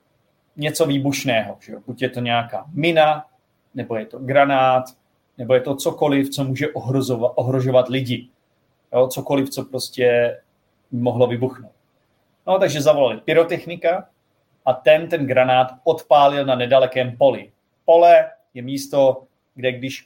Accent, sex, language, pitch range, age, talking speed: native, male, Czech, 120-145 Hz, 30-49, 135 wpm